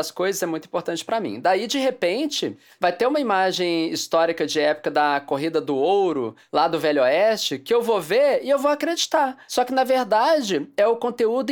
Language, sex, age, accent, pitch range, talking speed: English, male, 20-39, Brazilian, 160-235 Hz, 205 wpm